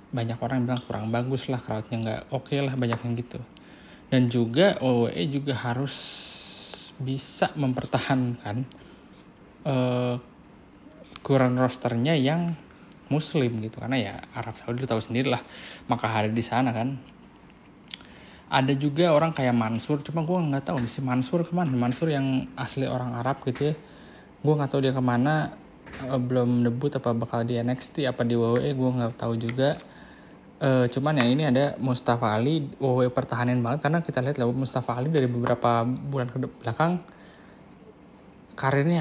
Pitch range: 120-140 Hz